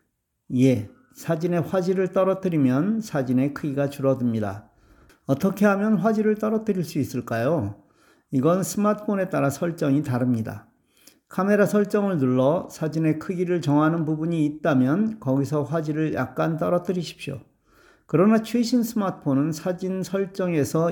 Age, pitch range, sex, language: 40-59, 135-190 Hz, male, Korean